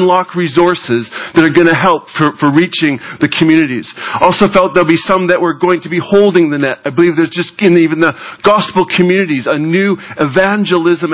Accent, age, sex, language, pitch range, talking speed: American, 40-59, male, English, 165-195 Hz, 205 wpm